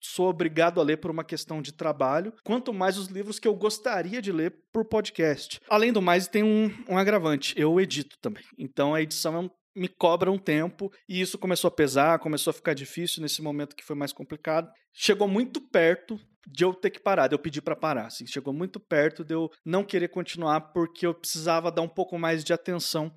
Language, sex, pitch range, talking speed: Portuguese, male, 160-200 Hz, 215 wpm